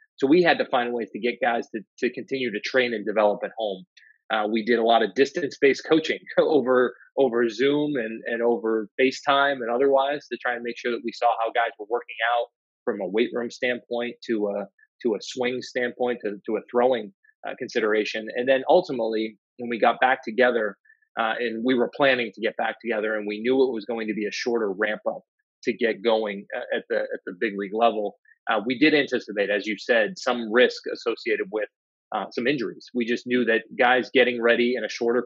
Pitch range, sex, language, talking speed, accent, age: 115-130 Hz, male, English, 220 wpm, American, 30-49